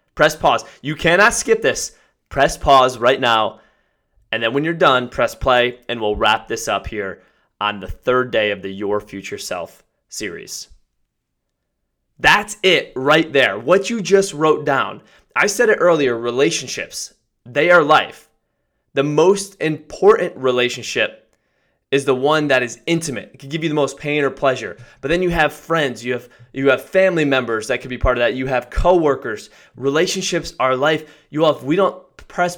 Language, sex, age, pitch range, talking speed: English, male, 20-39, 125-155 Hz, 180 wpm